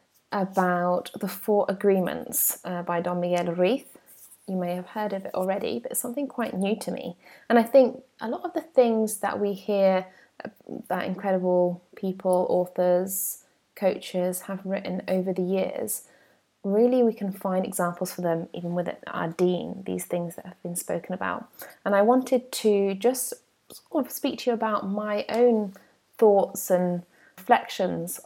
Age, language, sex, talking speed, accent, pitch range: 20-39, English, female, 160 wpm, British, 180-210 Hz